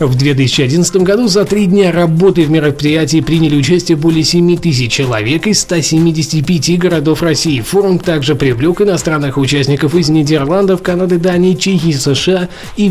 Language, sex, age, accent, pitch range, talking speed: Russian, male, 20-39, native, 145-180 Hz, 140 wpm